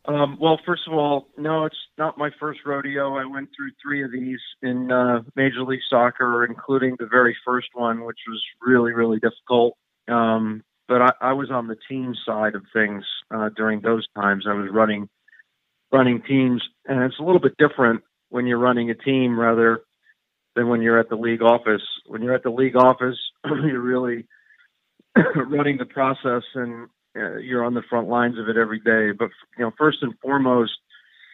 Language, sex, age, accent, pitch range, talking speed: English, male, 50-69, American, 110-130 Hz, 190 wpm